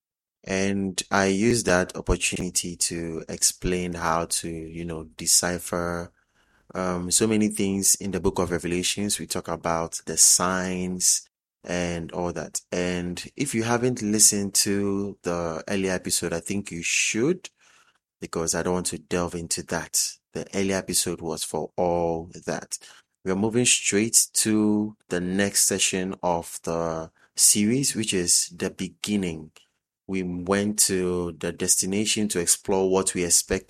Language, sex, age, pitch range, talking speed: English, male, 30-49, 90-100 Hz, 145 wpm